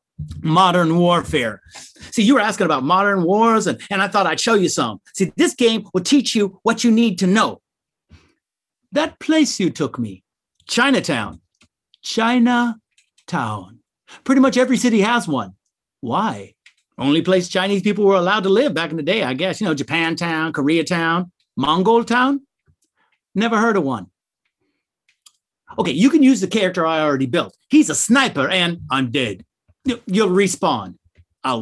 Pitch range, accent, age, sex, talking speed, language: 175-275 Hz, American, 50-69, male, 160 wpm, English